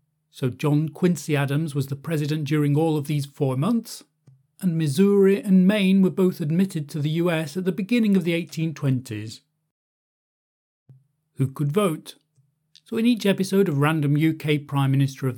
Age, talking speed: 40-59, 165 wpm